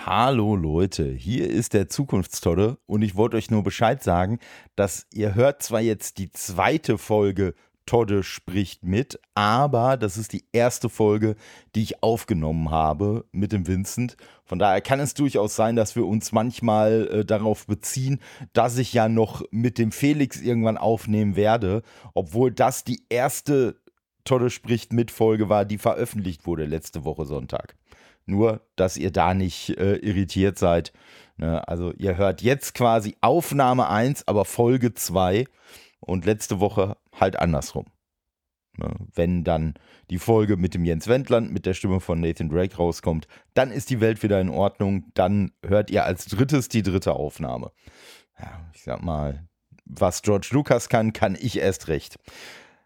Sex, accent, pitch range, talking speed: male, German, 90-115 Hz, 160 wpm